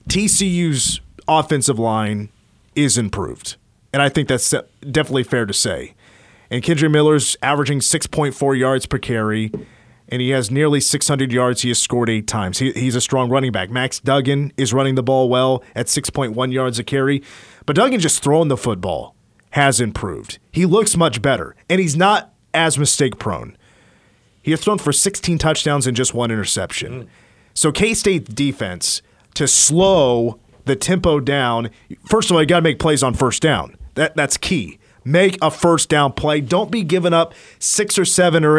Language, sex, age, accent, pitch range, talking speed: English, male, 30-49, American, 125-160 Hz, 175 wpm